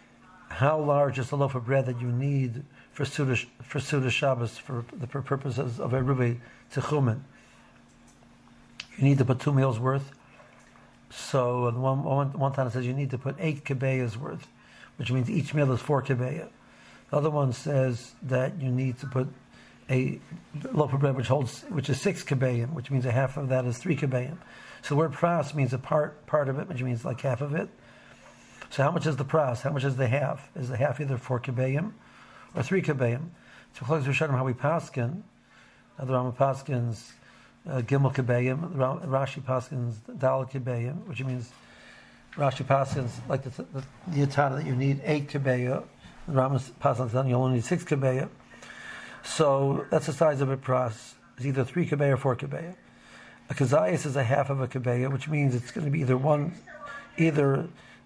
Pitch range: 130-145 Hz